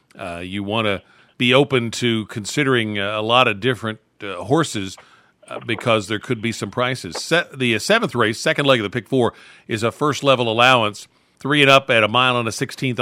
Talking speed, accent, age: 210 wpm, American, 50-69